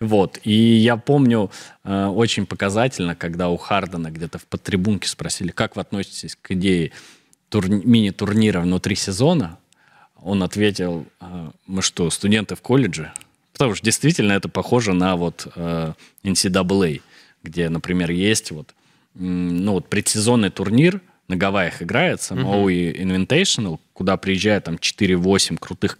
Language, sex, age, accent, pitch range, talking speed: Russian, male, 20-39, native, 90-120 Hz, 135 wpm